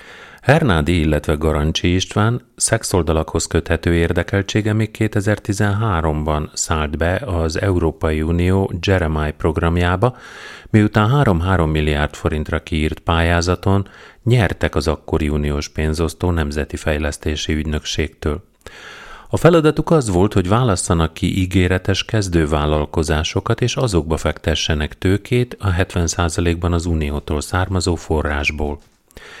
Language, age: Hungarian, 30-49